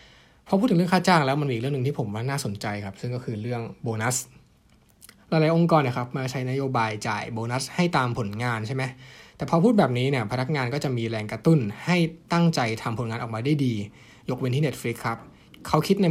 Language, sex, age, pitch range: Thai, male, 20-39, 115-150 Hz